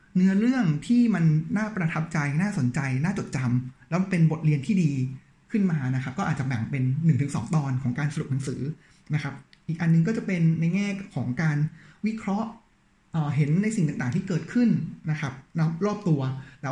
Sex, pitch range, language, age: male, 145-190 Hz, Thai, 20-39